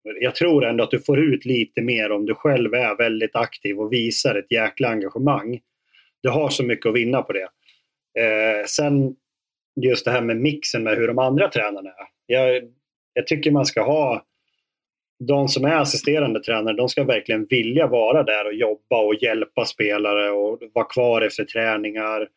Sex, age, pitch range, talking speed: male, 30-49, 110-130 Hz, 175 wpm